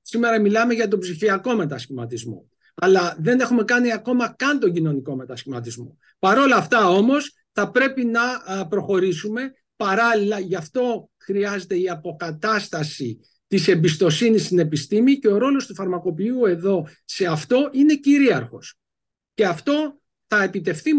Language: Greek